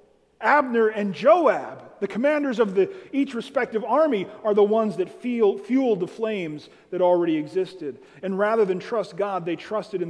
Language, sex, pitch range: English, male, 180-230 Hz